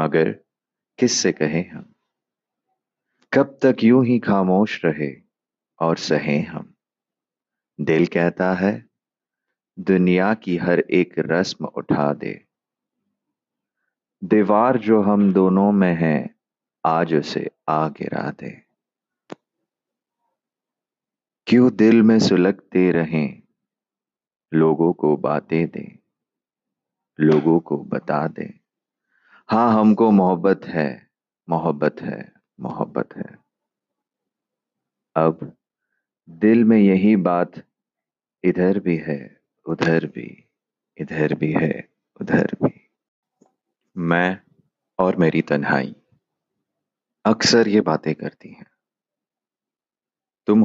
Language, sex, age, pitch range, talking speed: Hindi, male, 30-49, 80-105 Hz, 95 wpm